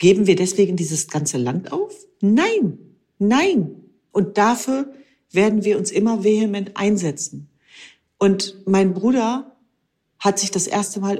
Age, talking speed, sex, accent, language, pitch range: 40-59, 135 wpm, female, German, German, 155-205 Hz